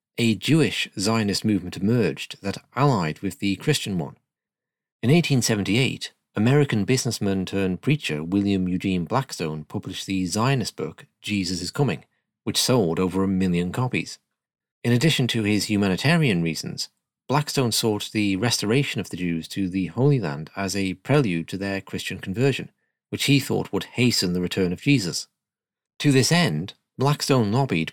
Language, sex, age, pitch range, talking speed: English, male, 40-59, 95-120 Hz, 150 wpm